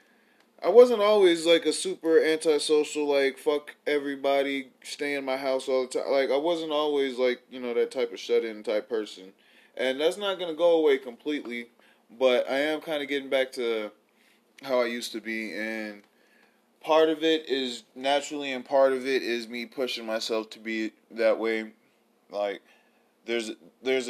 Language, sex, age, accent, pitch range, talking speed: English, male, 20-39, American, 110-145 Hz, 180 wpm